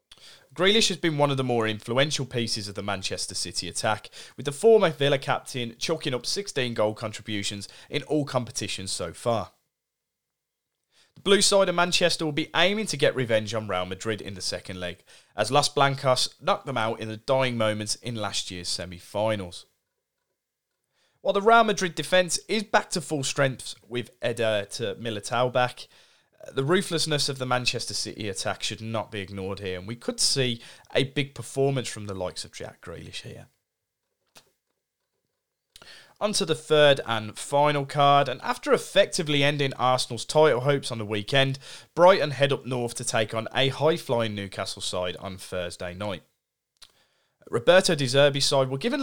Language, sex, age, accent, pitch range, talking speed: English, male, 30-49, British, 105-150 Hz, 170 wpm